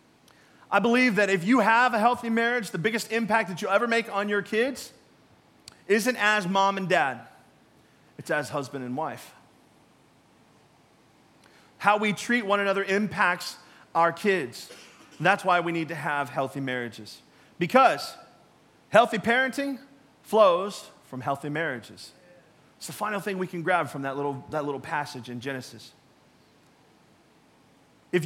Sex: male